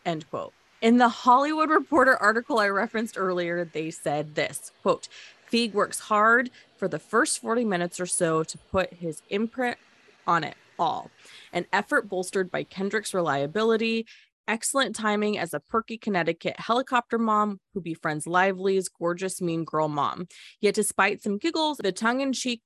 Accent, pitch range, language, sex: American, 175-230 Hz, English, female